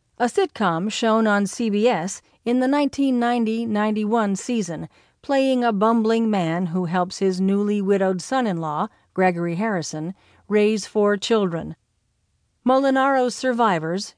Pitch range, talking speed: 175-225 Hz, 110 wpm